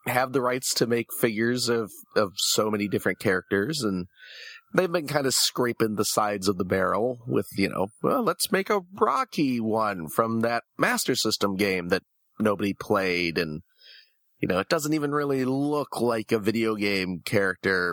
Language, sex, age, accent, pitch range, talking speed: English, male, 30-49, American, 100-125 Hz, 175 wpm